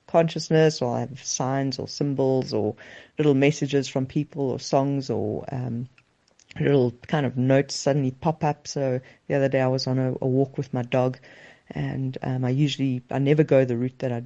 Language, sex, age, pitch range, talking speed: English, female, 50-69, 130-150 Hz, 200 wpm